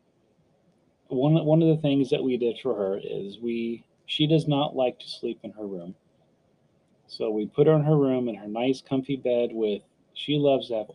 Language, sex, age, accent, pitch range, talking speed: English, male, 30-49, American, 110-135 Hz, 210 wpm